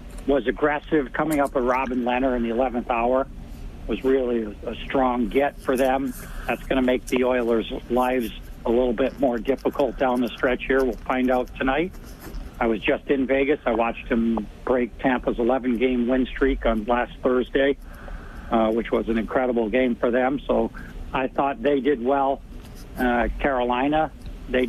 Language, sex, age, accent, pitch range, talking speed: English, male, 60-79, American, 125-140 Hz, 175 wpm